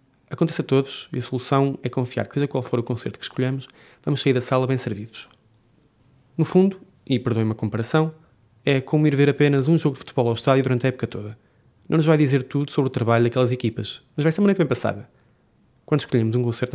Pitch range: 115-140 Hz